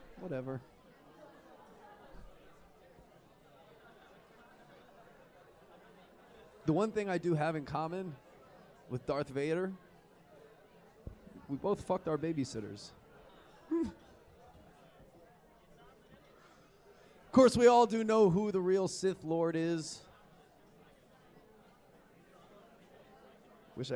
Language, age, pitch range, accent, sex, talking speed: English, 30-49, 135-185 Hz, American, male, 75 wpm